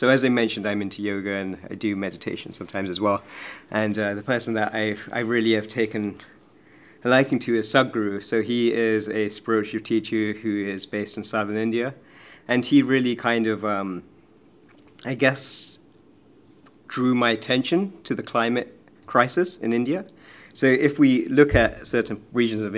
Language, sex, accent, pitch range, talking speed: English, male, British, 110-130 Hz, 175 wpm